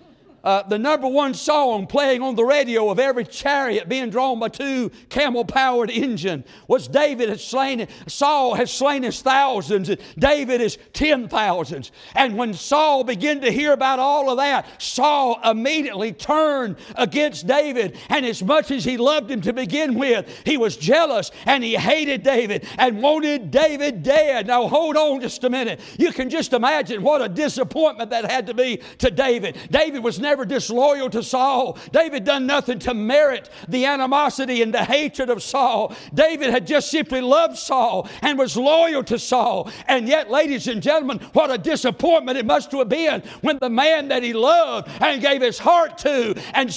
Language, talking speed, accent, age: English, 185 wpm, American, 60-79